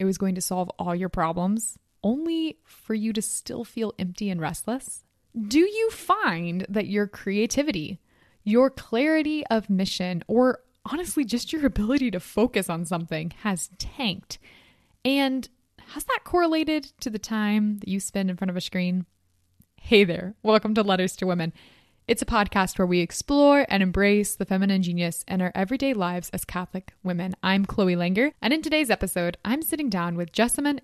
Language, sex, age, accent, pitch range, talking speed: English, female, 20-39, American, 180-240 Hz, 175 wpm